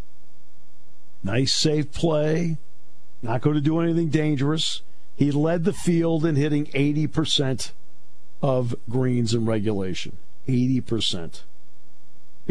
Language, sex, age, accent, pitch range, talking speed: English, male, 50-69, American, 105-155 Hz, 100 wpm